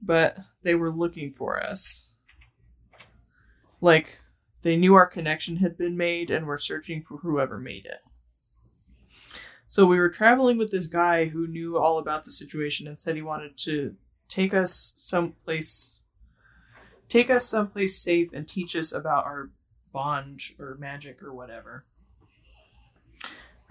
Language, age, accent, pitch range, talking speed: English, 20-39, American, 150-180 Hz, 140 wpm